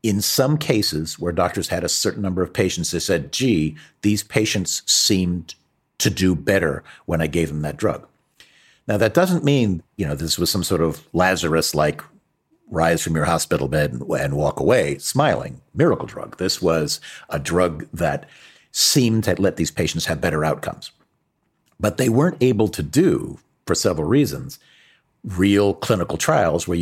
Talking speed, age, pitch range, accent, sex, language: 170 wpm, 50-69, 80-115 Hz, American, male, English